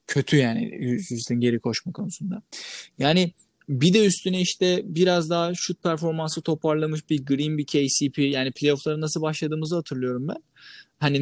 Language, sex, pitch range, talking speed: Turkish, male, 145-205 Hz, 145 wpm